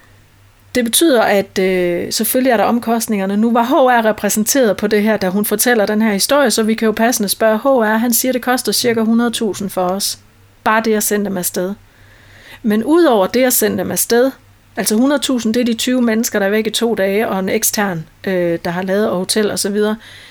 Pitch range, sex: 195-245 Hz, female